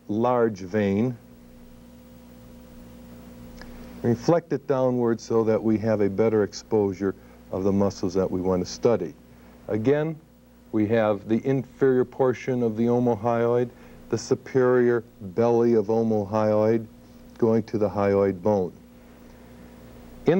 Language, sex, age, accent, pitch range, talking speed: English, male, 60-79, American, 105-130 Hz, 120 wpm